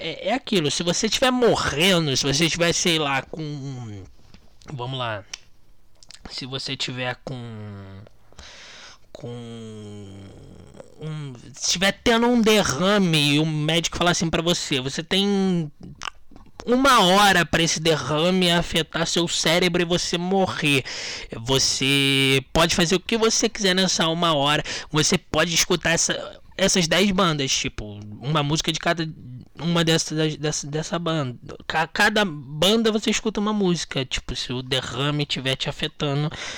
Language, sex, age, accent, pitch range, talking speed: Portuguese, male, 20-39, Brazilian, 135-185 Hz, 140 wpm